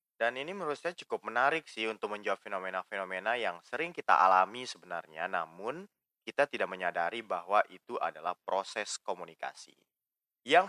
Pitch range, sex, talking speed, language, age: 105-145 Hz, male, 140 wpm, Indonesian, 20-39